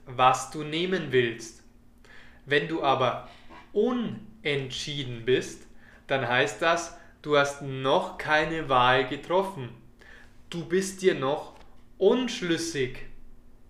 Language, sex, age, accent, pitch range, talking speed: German, male, 20-39, German, 135-180 Hz, 100 wpm